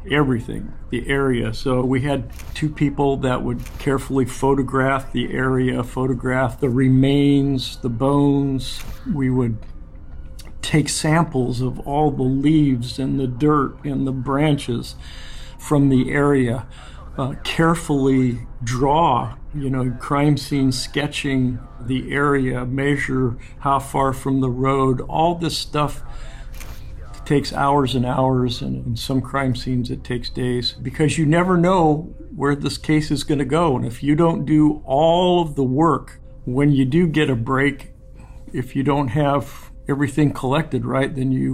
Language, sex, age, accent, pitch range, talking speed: English, male, 50-69, American, 125-145 Hz, 145 wpm